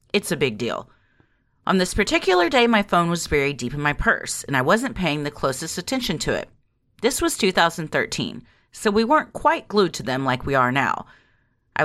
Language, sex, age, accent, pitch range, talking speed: English, female, 30-49, American, 130-210 Hz, 205 wpm